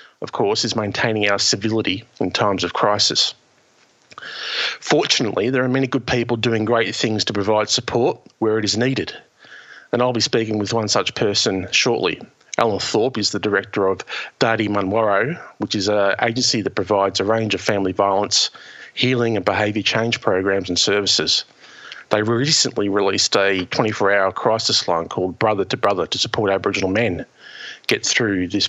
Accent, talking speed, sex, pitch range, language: Australian, 165 wpm, male, 100-120 Hz, English